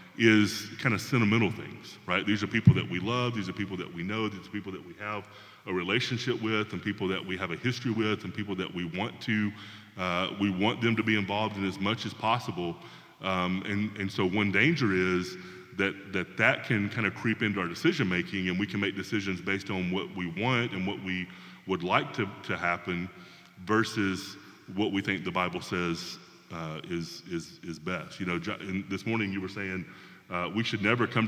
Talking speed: 215 wpm